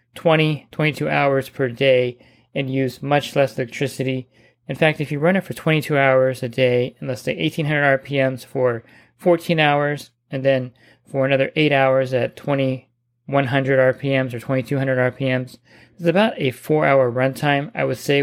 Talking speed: 170 wpm